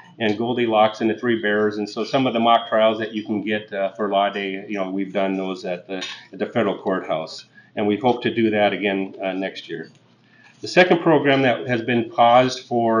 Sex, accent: male, American